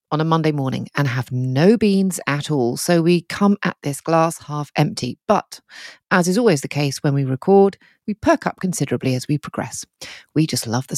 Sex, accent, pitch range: female, British, 145-190 Hz